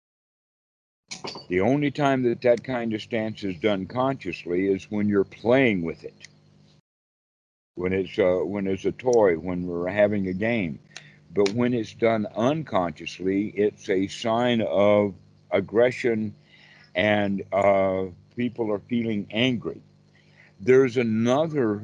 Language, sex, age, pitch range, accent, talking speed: English, male, 60-79, 95-115 Hz, American, 130 wpm